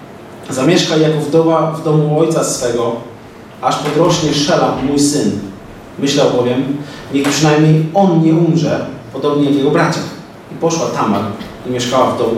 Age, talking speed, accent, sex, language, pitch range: 30-49, 145 wpm, native, male, Polish, 125-155 Hz